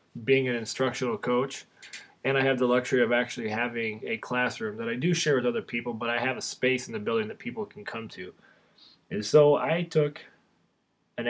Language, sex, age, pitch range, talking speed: English, male, 20-39, 120-145 Hz, 205 wpm